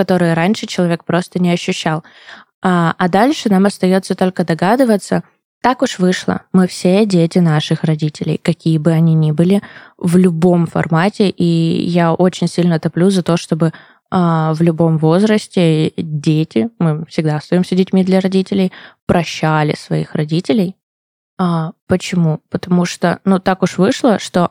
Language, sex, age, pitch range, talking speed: Russian, female, 20-39, 160-190 Hz, 140 wpm